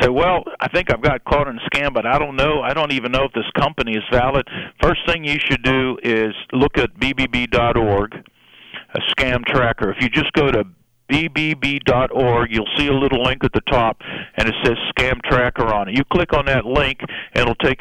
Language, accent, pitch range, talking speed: English, American, 120-140 Hz, 215 wpm